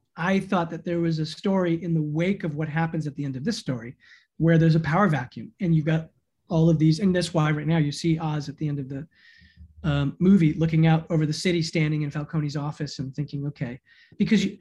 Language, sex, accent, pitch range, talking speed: English, male, American, 155-180 Hz, 240 wpm